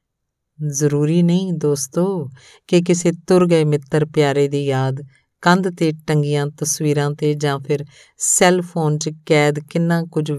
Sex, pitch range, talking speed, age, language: female, 145-170 Hz, 140 wpm, 50-69, Punjabi